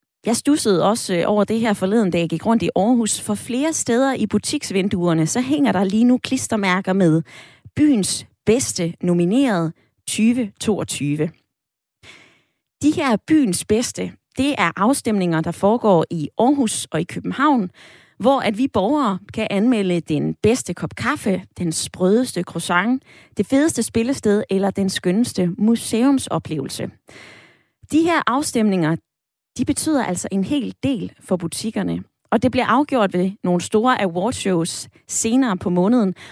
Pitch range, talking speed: 180-250 Hz, 140 wpm